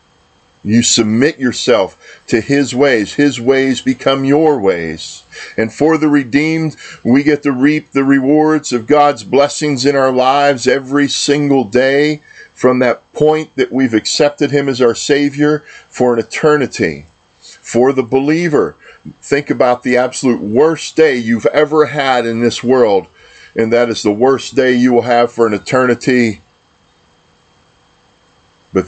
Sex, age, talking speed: male, 50-69, 150 wpm